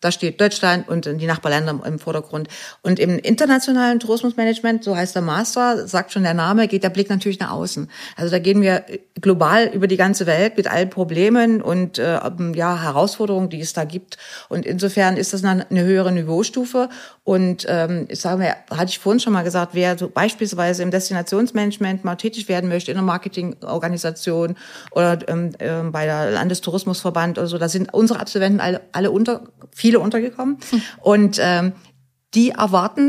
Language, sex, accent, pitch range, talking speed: German, female, German, 175-210 Hz, 175 wpm